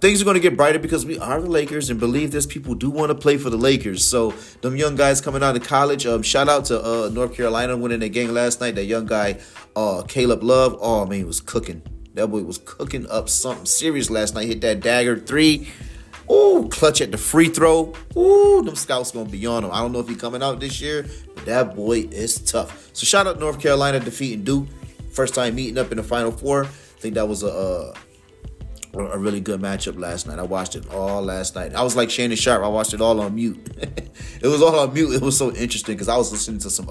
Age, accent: 30-49, American